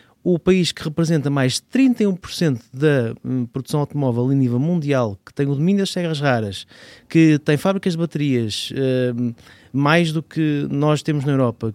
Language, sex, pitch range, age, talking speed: Portuguese, male, 120-150 Hz, 20-39, 170 wpm